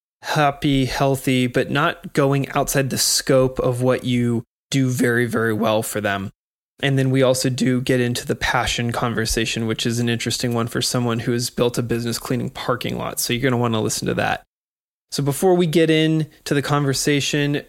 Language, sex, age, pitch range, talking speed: English, male, 20-39, 125-140 Hz, 195 wpm